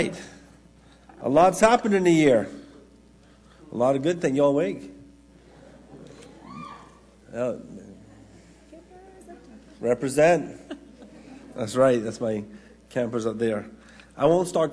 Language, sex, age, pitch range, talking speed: English, male, 50-69, 105-135 Hz, 105 wpm